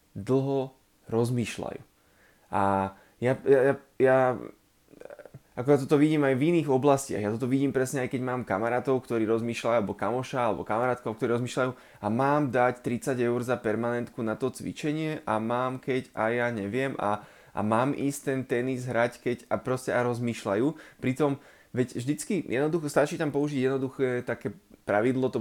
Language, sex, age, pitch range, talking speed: Slovak, male, 20-39, 110-135 Hz, 165 wpm